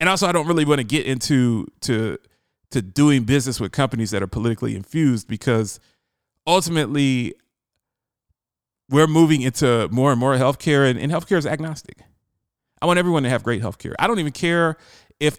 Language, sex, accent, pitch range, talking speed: English, male, American, 120-160 Hz, 165 wpm